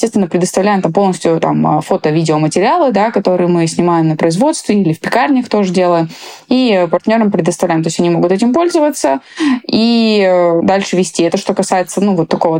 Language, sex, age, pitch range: Russian, female, 20-39, 170-220 Hz